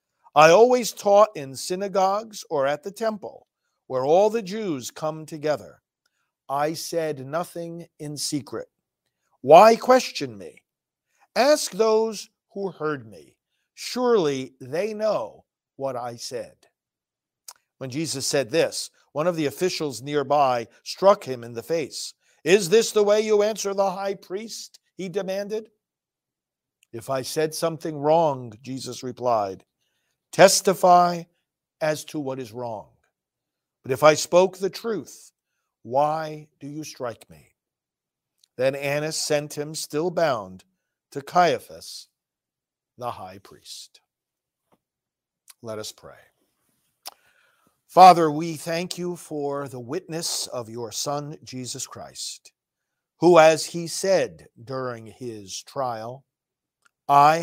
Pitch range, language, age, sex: 135-185 Hz, English, 50-69, male